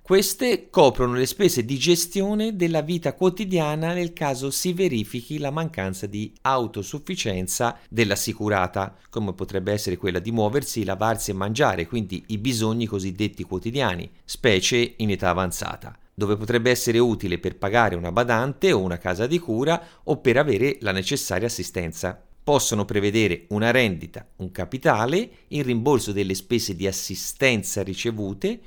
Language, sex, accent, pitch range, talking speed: Italian, male, native, 95-140 Hz, 140 wpm